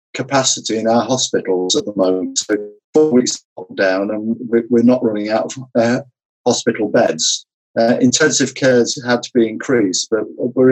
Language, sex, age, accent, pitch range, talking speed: English, male, 50-69, British, 120-135 Hz, 170 wpm